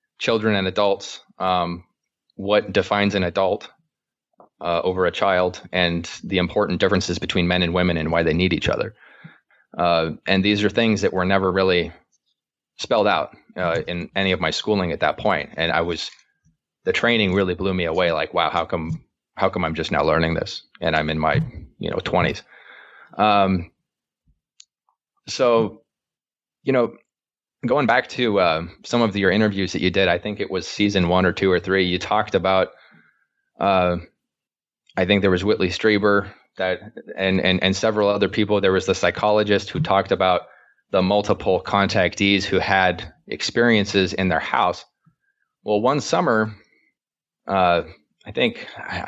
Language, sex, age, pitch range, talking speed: English, male, 20-39, 90-105 Hz, 170 wpm